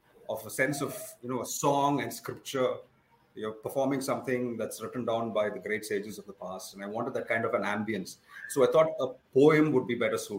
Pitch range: 135-175 Hz